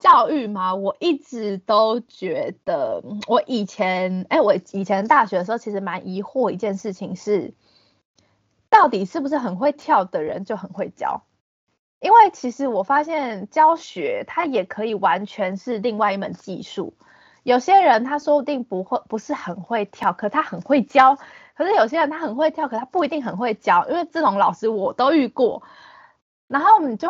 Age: 20-39